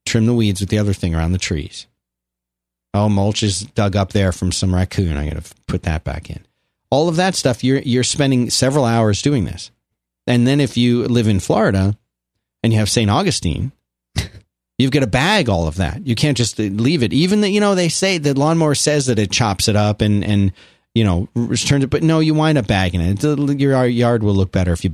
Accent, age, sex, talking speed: American, 40-59, male, 225 wpm